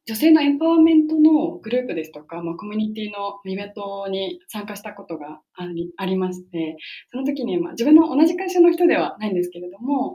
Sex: female